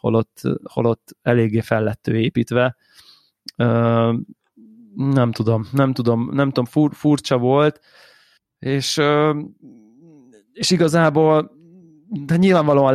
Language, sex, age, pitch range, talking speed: Hungarian, male, 20-39, 115-140 Hz, 90 wpm